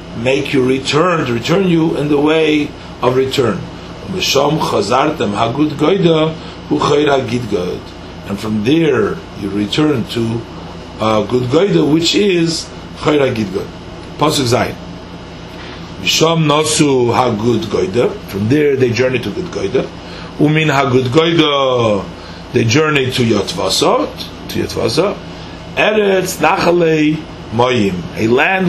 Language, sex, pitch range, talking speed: English, male, 100-155 Hz, 120 wpm